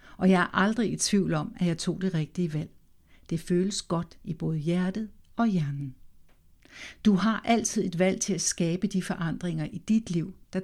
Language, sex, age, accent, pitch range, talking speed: Danish, female, 60-79, native, 165-215 Hz, 195 wpm